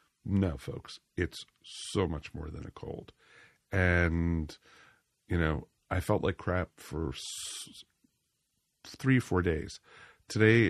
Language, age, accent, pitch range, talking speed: English, 50-69, American, 85-95 Hz, 120 wpm